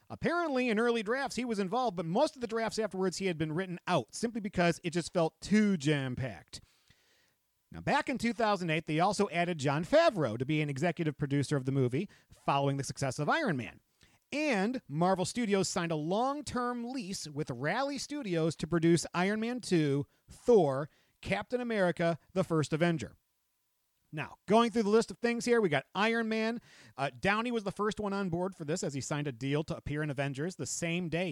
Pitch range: 145-210 Hz